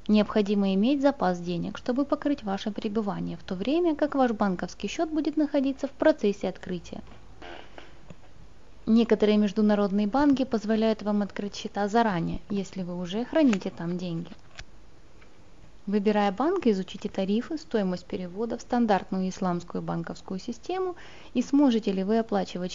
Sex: female